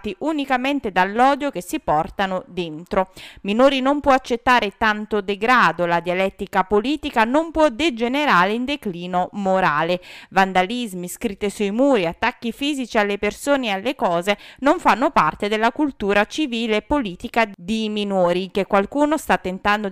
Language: Italian